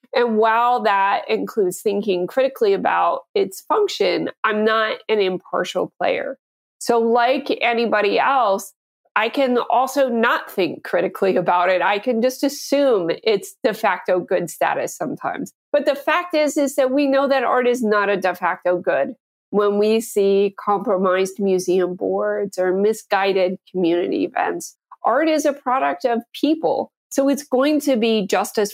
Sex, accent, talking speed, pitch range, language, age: female, American, 155 wpm, 195-275 Hz, English, 30-49